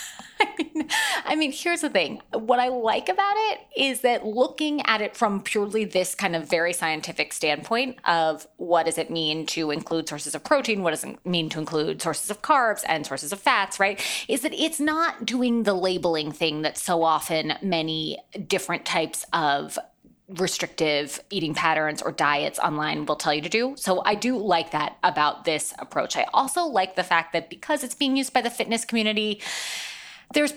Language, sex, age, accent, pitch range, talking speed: English, female, 20-39, American, 175-270 Hz, 190 wpm